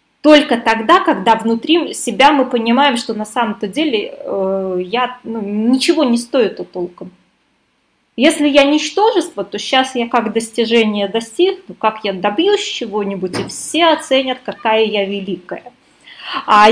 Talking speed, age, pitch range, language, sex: 140 wpm, 20-39, 205-270 Hz, Russian, female